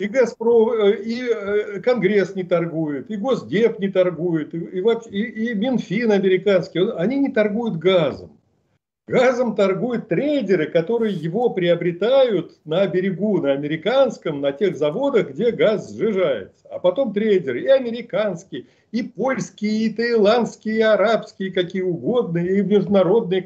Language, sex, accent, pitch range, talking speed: Russian, male, native, 175-225 Hz, 130 wpm